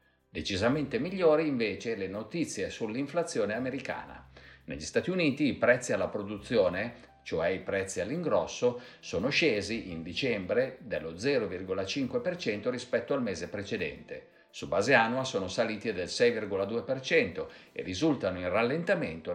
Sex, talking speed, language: male, 120 wpm, Italian